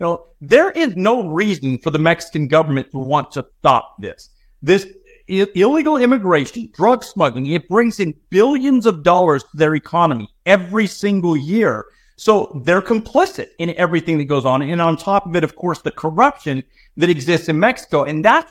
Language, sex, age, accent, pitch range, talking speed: English, male, 50-69, American, 155-220 Hz, 180 wpm